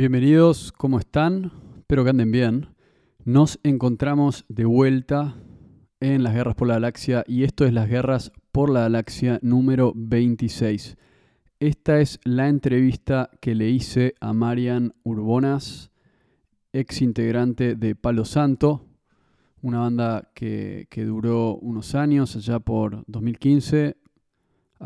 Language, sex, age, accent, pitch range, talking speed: Spanish, male, 20-39, Argentinian, 115-135 Hz, 125 wpm